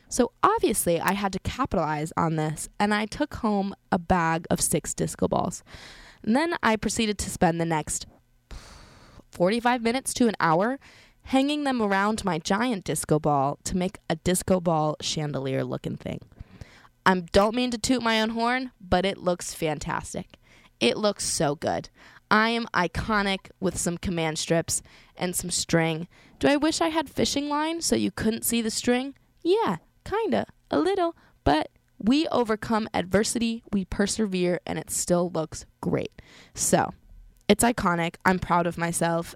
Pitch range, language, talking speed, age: 170-235 Hz, English, 165 wpm, 20-39